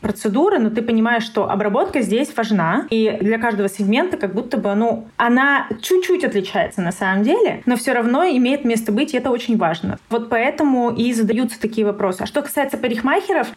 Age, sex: 20-39, female